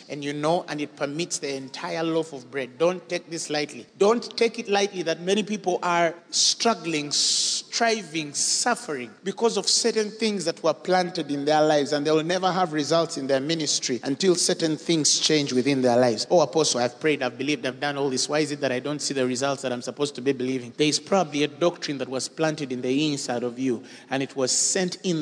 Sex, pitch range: male, 140-190 Hz